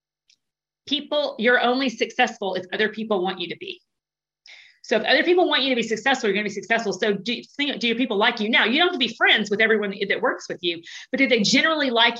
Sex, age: female, 40-59